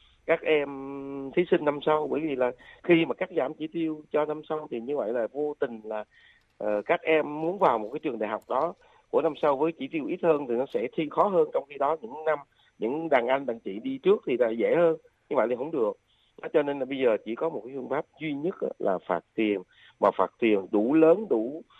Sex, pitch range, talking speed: male, 110-165 Hz, 255 wpm